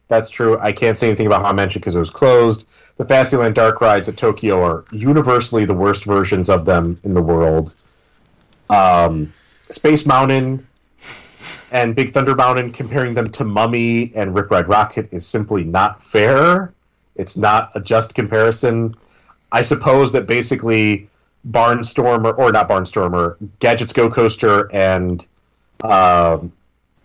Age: 30-49